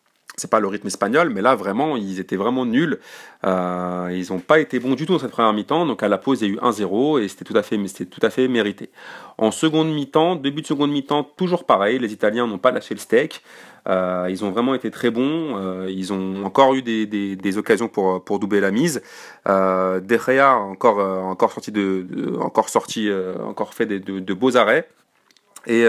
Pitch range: 95-125 Hz